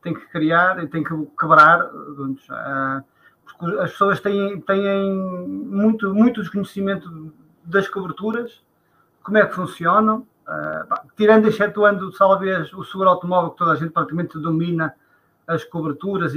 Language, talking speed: Portuguese, 125 wpm